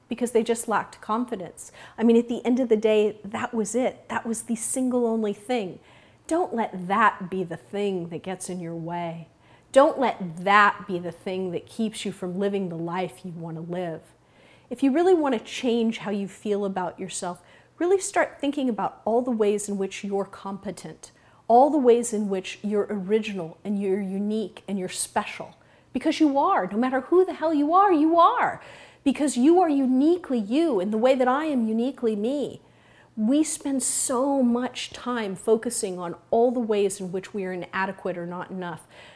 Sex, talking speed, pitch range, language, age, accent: female, 195 wpm, 190-255 Hz, English, 40-59, American